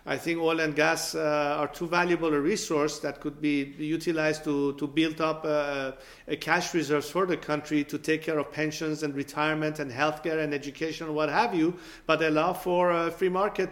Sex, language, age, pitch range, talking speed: male, English, 50-69, 150-175 Hz, 205 wpm